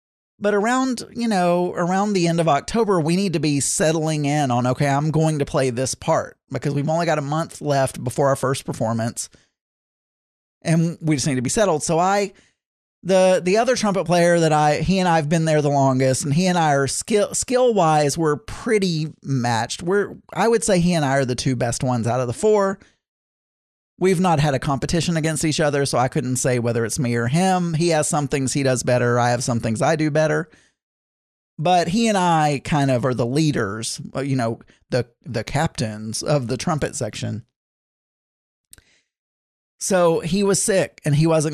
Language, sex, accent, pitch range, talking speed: English, male, American, 130-175 Hz, 200 wpm